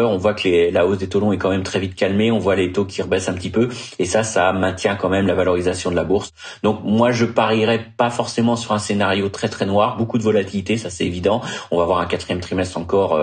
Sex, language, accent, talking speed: male, French, French, 270 wpm